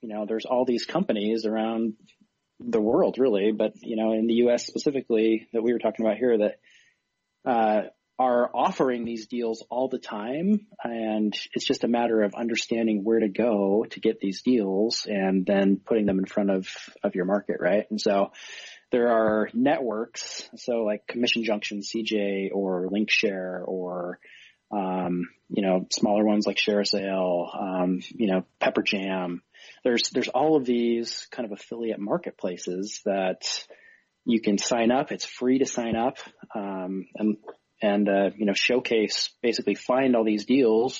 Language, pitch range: English, 105-120 Hz